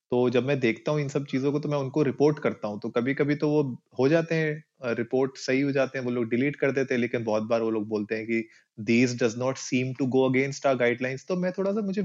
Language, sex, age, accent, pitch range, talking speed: Hindi, male, 20-39, native, 120-150 Hz, 280 wpm